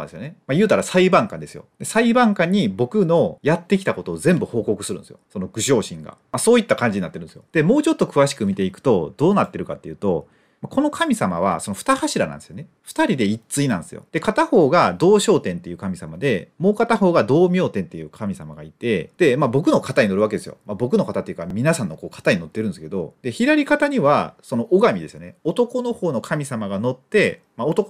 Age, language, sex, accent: 30-49, Japanese, male, native